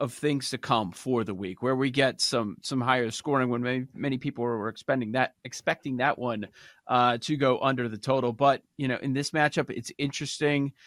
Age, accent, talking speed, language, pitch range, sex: 40-59, American, 210 wpm, English, 120-160 Hz, male